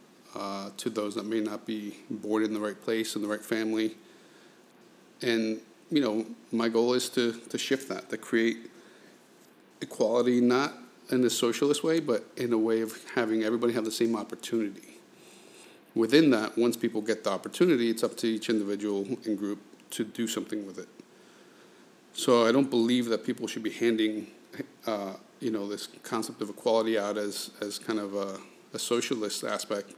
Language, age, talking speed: English, 50-69, 180 wpm